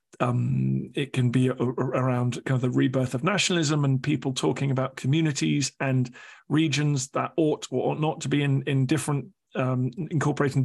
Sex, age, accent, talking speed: male, 40-59, British, 165 wpm